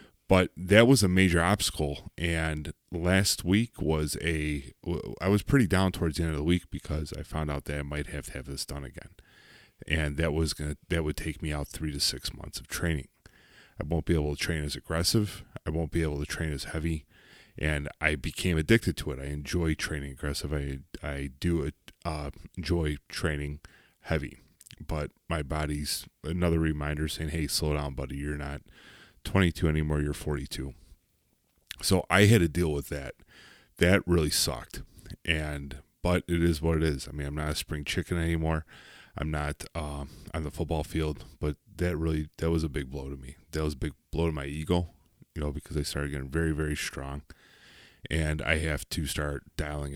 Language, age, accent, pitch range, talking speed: English, 30-49, American, 75-85 Hz, 200 wpm